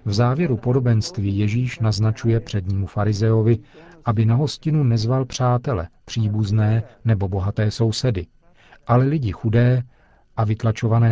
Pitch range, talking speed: 105-125 Hz, 115 wpm